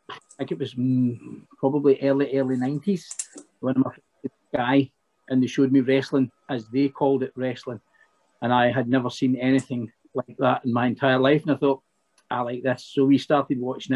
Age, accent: 40-59, British